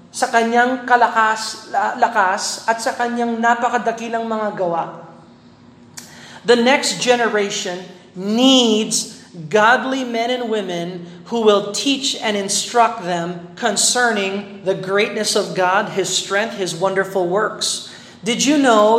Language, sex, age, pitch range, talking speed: Filipino, male, 40-59, 195-245 Hz, 115 wpm